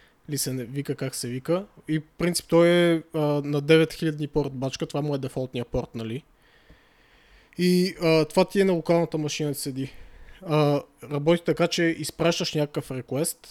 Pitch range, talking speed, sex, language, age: 140-160 Hz, 170 wpm, male, Bulgarian, 20-39